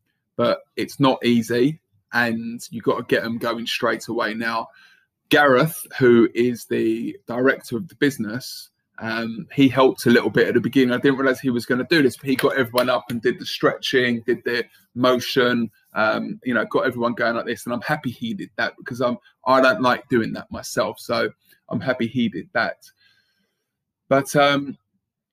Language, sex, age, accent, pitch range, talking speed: English, male, 20-39, British, 115-140 Hz, 195 wpm